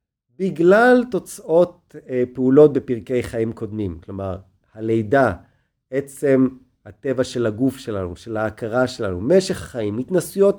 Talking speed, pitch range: 115 wpm, 110-170 Hz